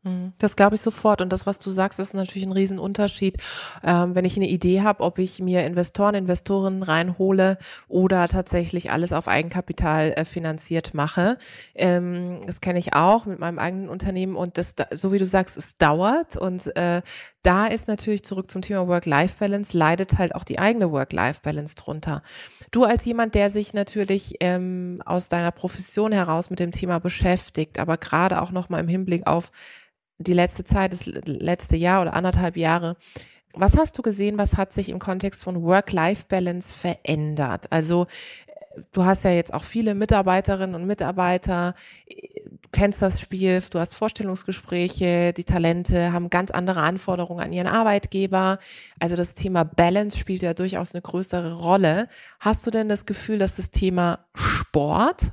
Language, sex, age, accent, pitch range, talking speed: German, female, 20-39, German, 175-200 Hz, 165 wpm